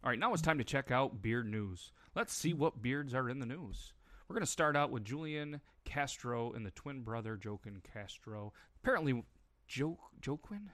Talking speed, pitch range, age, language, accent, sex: 190 wpm, 105-135 Hz, 30-49, English, American, male